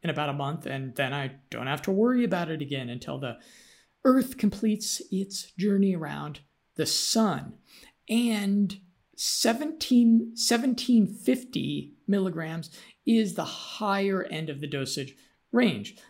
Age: 50-69